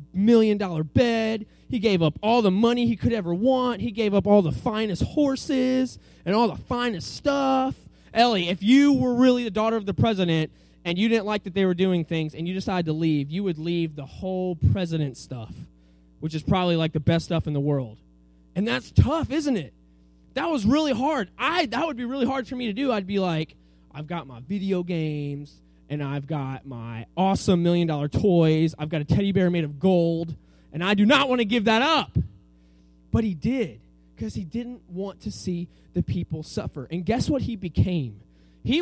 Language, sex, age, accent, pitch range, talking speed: English, male, 20-39, American, 145-225 Hz, 210 wpm